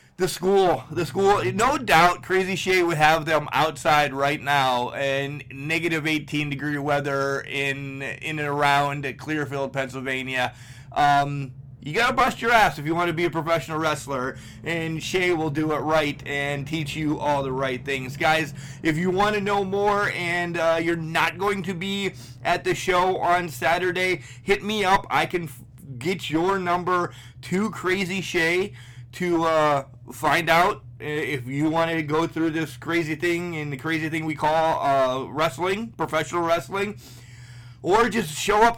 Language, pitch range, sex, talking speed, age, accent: English, 135-170 Hz, male, 165 wpm, 30-49, American